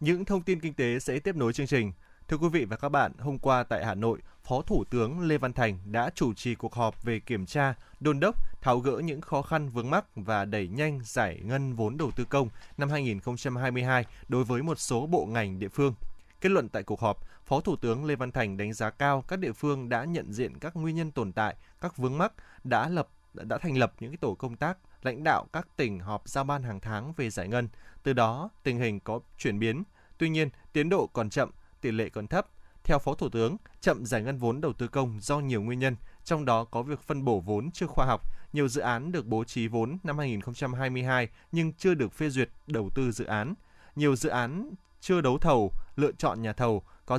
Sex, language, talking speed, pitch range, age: male, Vietnamese, 235 wpm, 115-150 Hz, 20-39